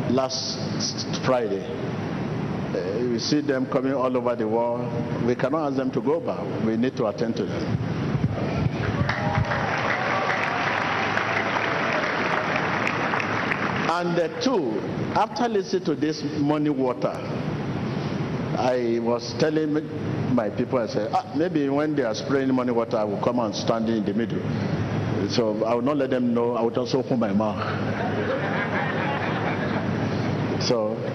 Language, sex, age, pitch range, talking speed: English, male, 50-69, 120-155 Hz, 135 wpm